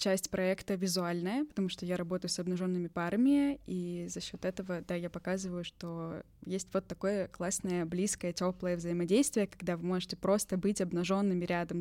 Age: 10-29